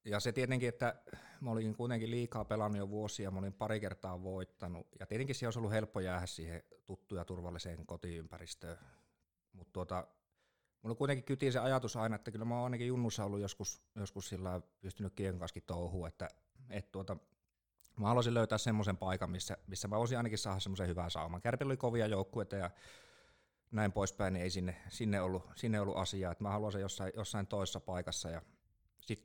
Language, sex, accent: Finnish, male, native